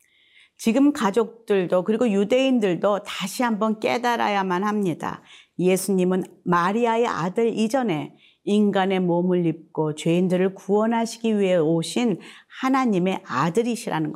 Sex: female